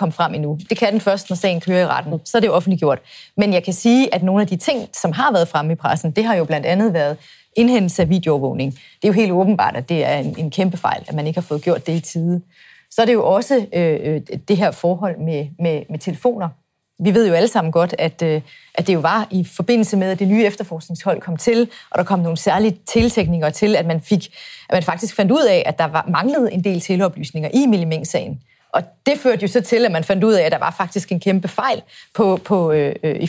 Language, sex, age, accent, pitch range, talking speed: Danish, female, 30-49, native, 170-225 Hz, 245 wpm